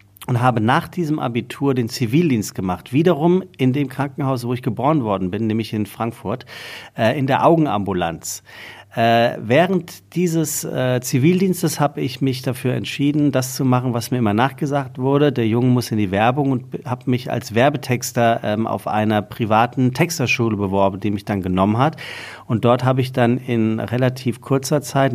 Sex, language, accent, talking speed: male, German, German, 165 wpm